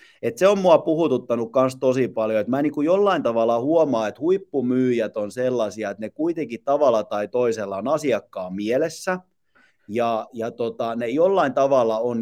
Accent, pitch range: native, 110-145 Hz